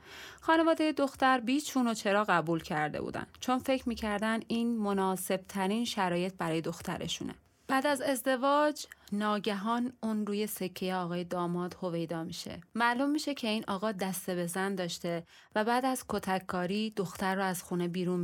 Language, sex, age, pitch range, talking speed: Persian, female, 30-49, 180-230 Hz, 150 wpm